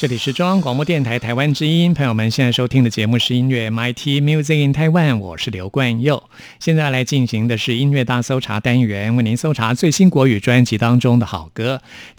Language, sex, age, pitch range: Chinese, male, 50-69, 110-135 Hz